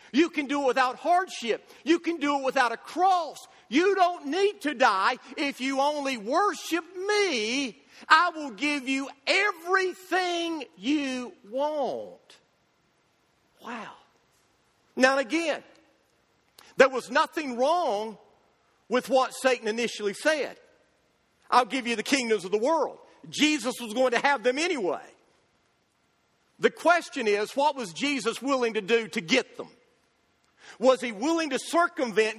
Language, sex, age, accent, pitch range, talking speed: English, male, 50-69, American, 230-310 Hz, 135 wpm